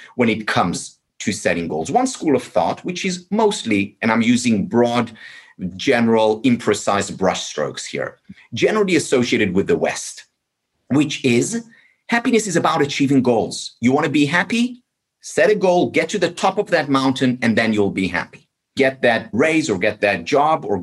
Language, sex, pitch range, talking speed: English, male, 115-190 Hz, 175 wpm